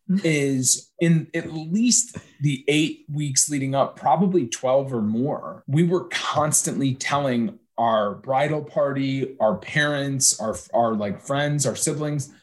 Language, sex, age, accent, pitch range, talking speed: English, male, 30-49, American, 125-150 Hz, 135 wpm